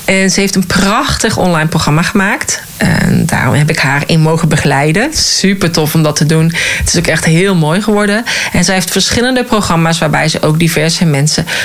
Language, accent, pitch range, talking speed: Dutch, Dutch, 155-195 Hz, 200 wpm